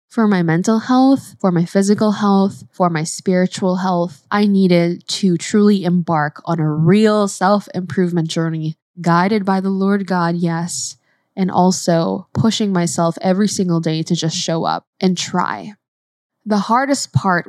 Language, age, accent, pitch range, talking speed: English, 10-29, American, 170-205 Hz, 150 wpm